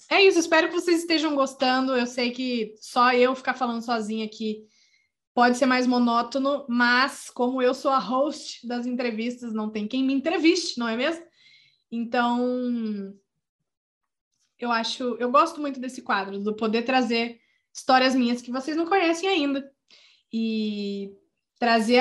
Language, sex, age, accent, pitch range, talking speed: Portuguese, female, 20-39, Brazilian, 225-270 Hz, 155 wpm